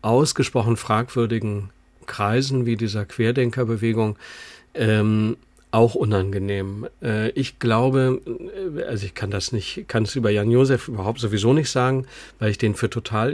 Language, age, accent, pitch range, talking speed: German, 50-69, German, 105-130 Hz, 135 wpm